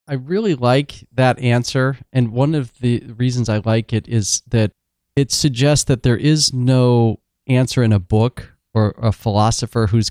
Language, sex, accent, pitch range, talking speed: English, male, American, 105-125 Hz, 170 wpm